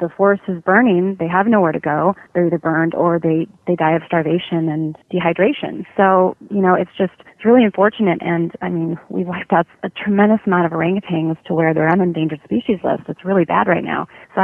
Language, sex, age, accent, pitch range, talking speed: English, female, 30-49, American, 170-205 Hz, 215 wpm